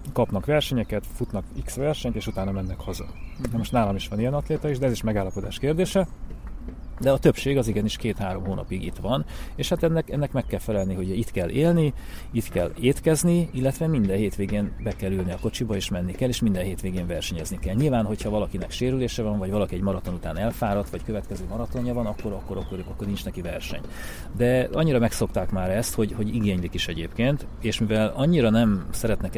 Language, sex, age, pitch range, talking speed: Hungarian, male, 30-49, 95-125 Hz, 200 wpm